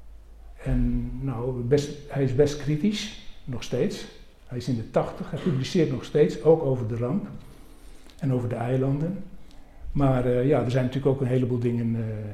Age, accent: 60-79, Dutch